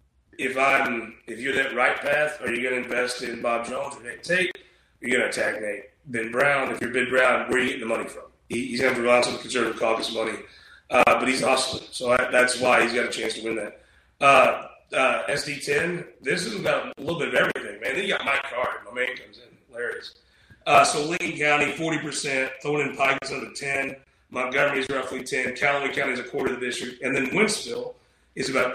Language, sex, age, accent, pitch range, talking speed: English, male, 30-49, American, 125-150 Hz, 230 wpm